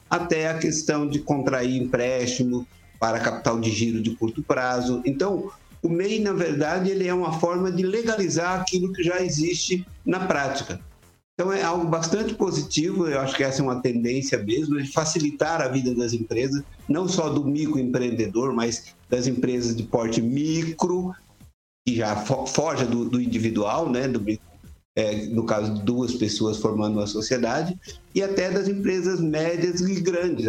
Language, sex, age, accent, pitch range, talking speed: Portuguese, male, 50-69, Brazilian, 120-175 Hz, 165 wpm